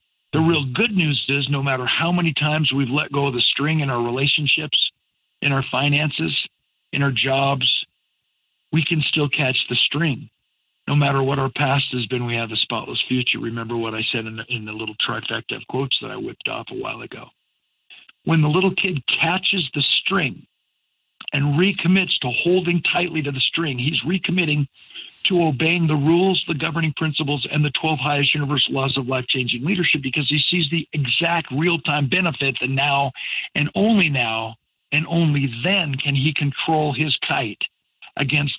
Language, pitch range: English, 130-160 Hz